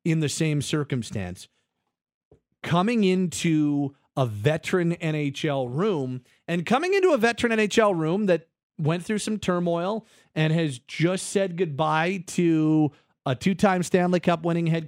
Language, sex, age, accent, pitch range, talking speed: English, male, 40-59, American, 135-175 Hz, 135 wpm